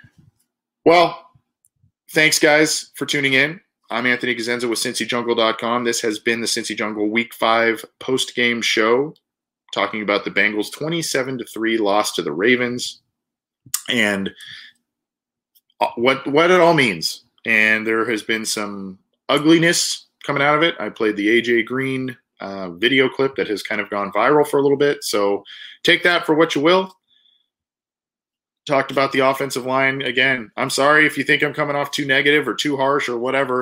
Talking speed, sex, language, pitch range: 165 wpm, male, English, 105-140 Hz